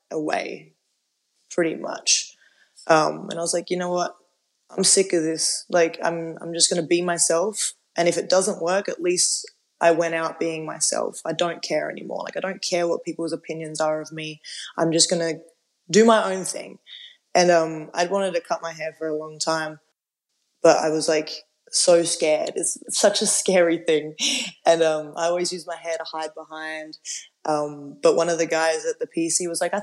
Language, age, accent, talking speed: English, 20-39, Australian, 205 wpm